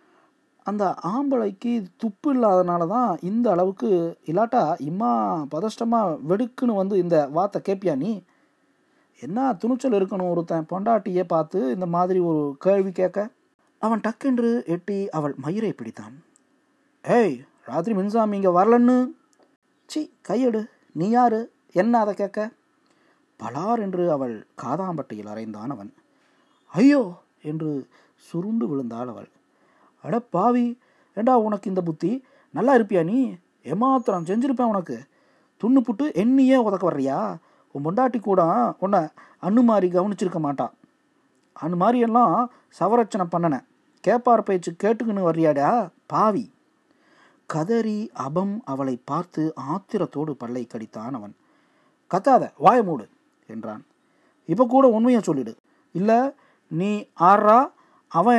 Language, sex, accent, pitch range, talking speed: Tamil, male, native, 175-250 Hz, 110 wpm